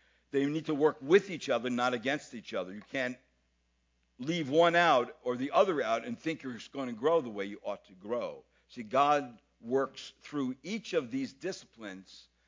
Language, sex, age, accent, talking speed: English, male, 60-79, American, 195 wpm